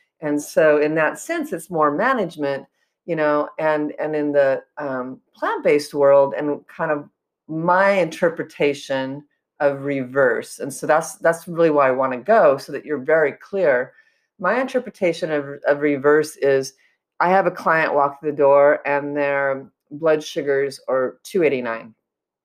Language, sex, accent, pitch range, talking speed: English, female, American, 140-170 Hz, 160 wpm